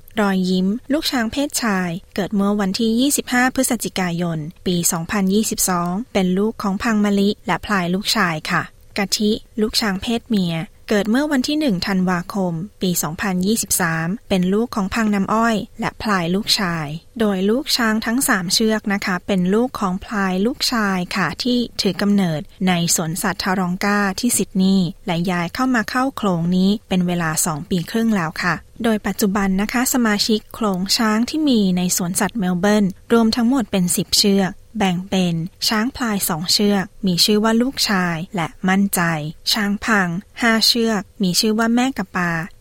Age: 20-39